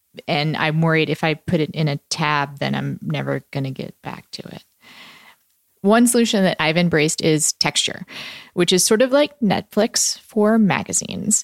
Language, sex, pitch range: English, female, 155-200 Hz